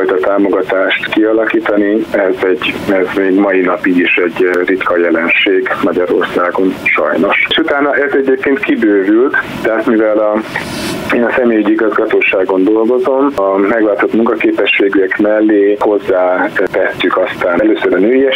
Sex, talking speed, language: male, 125 wpm, Hungarian